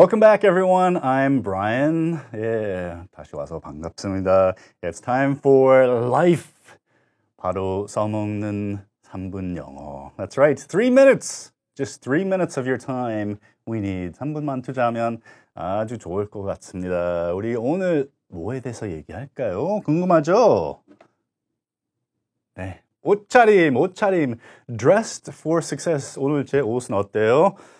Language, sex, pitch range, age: Korean, male, 95-140 Hz, 30-49